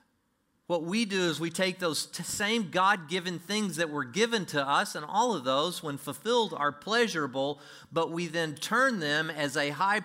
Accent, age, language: American, 40-59, English